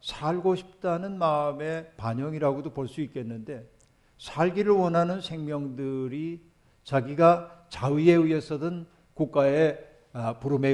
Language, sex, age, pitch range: Korean, male, 60-79, 135-165 Hz